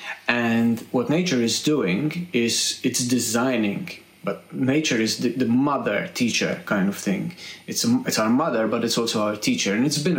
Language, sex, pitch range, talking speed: English, male, 115-140 Hz, 185 wpm